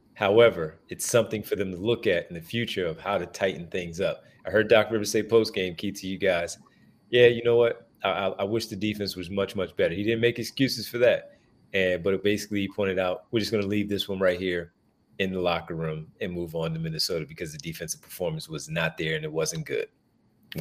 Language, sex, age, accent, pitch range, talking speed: English, male, 30-49, American, 100-120 Hz, 250 wpm